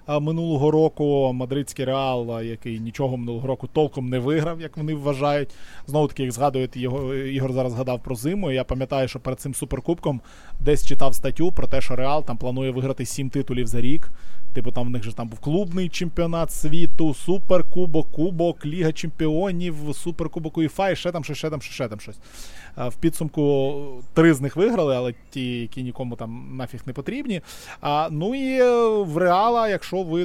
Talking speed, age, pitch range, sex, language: 180 wpm, 20-39, 125-165 Hz, male, Ukrainian